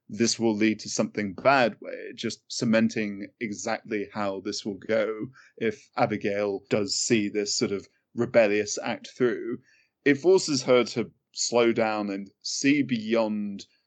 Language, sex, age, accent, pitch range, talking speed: English, male, 20-39, British, 105-145 Hz, 145 wpm